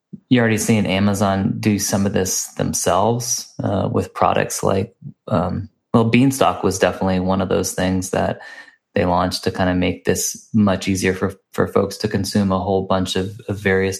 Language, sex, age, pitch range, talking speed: English, male, 20-39, 95-105 Hz, 185 wpm